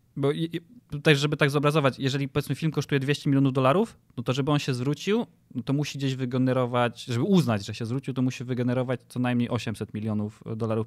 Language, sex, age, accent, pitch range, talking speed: Polish, male, 20-39, native, 120-140 Hz, 205 wpm